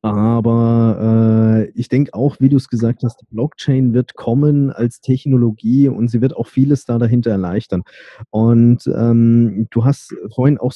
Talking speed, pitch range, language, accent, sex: 165 wpm, 115-130 Hz, German, German, male